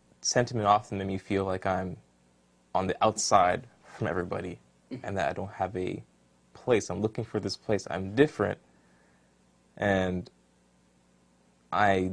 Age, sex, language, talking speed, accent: 20-39, male, English, 140 wpm, American